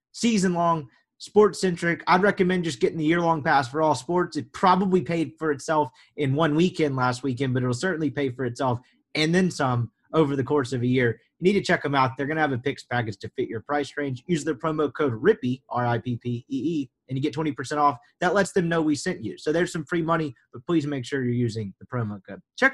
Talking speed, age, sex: 230 wpm, 30-49, male